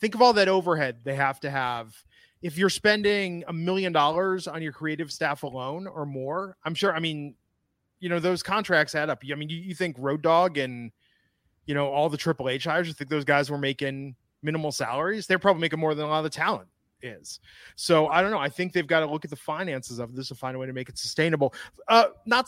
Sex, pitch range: male, 135-185 Hz